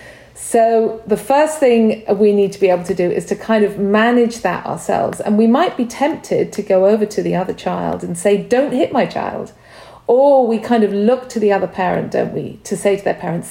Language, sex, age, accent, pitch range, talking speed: English, female, 40-59, British, 200-240 Hz, 230 wpm